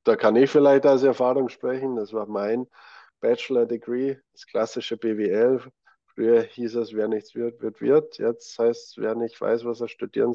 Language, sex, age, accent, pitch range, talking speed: German, male, 50-69, German, 100-120 Hz, 180 wpm